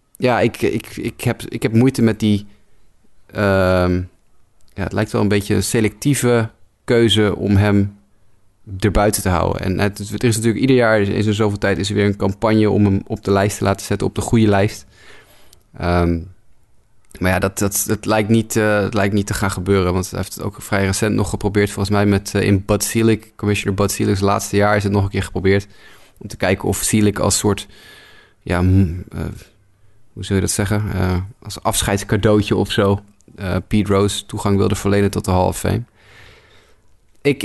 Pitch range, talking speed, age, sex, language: 95-105 Hz, 200 wpm, 20-39, male, Dutch